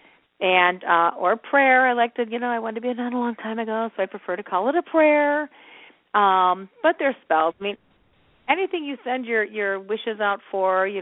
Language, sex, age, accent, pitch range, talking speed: English, female, 40-59, American, 185-245 Hz, 230 wpm